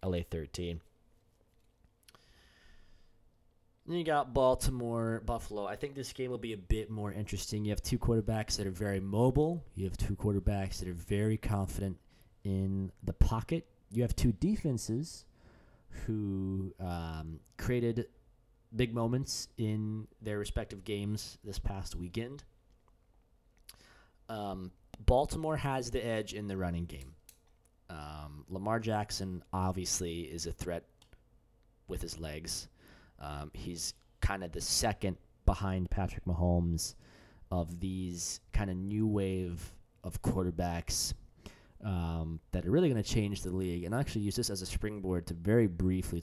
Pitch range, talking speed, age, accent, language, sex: 90-115 Hz, 140 wpm, 20-39, American, English, male